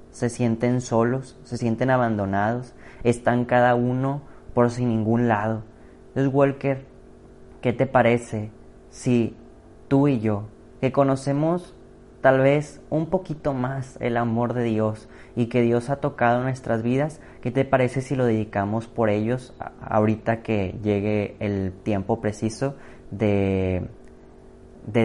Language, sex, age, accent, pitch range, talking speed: Spanish, male, 30-49, Mexican, 110-130 Hz, 135 wpm